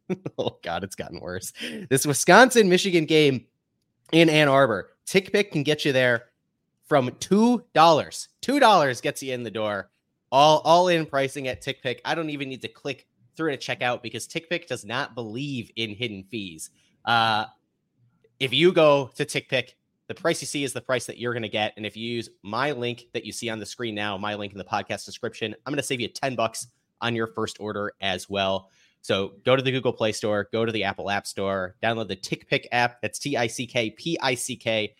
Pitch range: 110-140 Hz